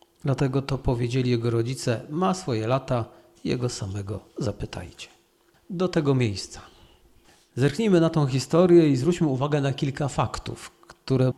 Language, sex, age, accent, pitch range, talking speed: Polish, male, 40-59, native, 125-165 Hz, 130 wpm